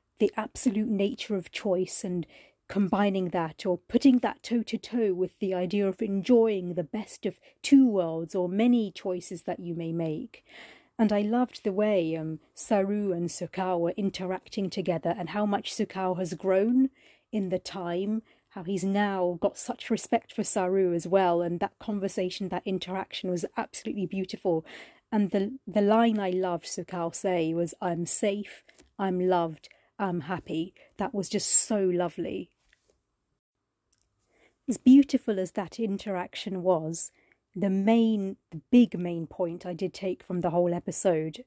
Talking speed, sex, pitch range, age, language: 160 wpm, female, 180-215 Hz, 30-49, English